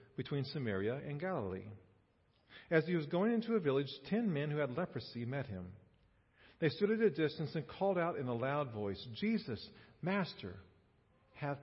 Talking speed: 170 wpm